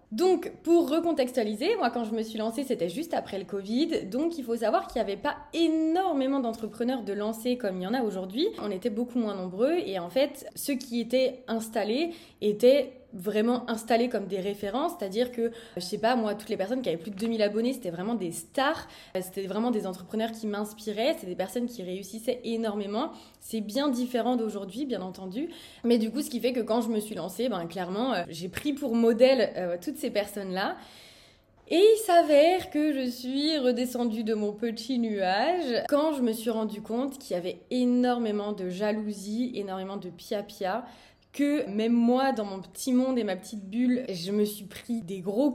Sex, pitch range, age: female, 205-265 Hz, 20-39